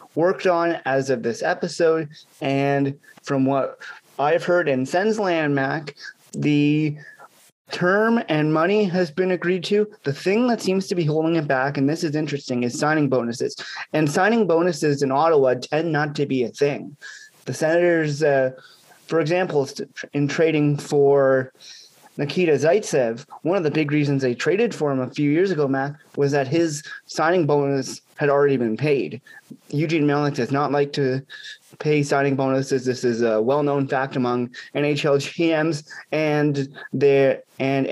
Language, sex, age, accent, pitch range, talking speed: English, male, 30-49, American, 140-170 Hz, 160 wpm